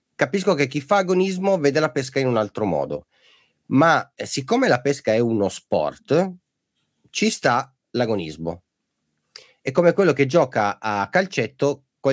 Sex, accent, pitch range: male, native, 95-140 Hz